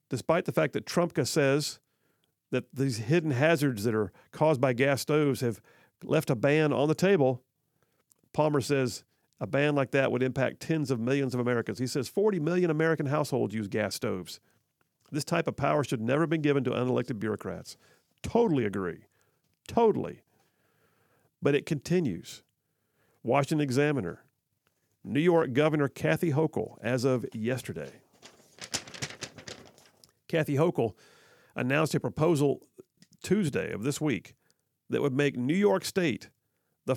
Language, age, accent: English, 50-69, American